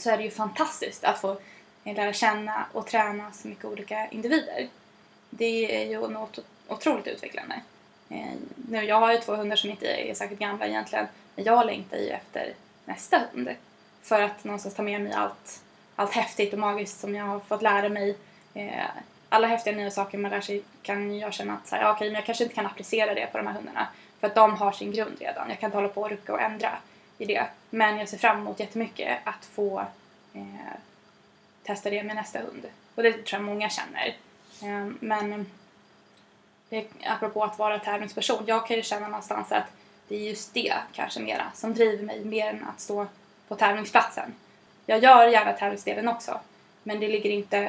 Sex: female